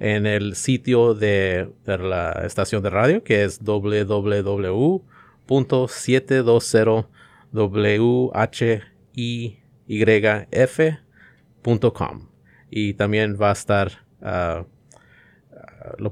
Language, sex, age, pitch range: English, male, 30-49, 100-120 Hz